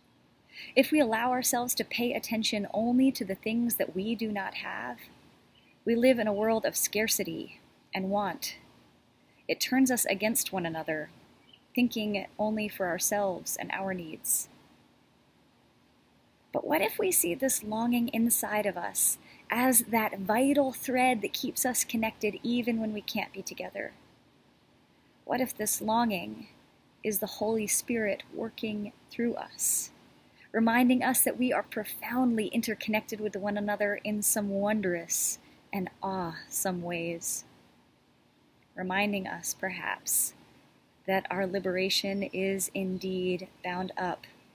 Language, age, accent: English, 30-49, American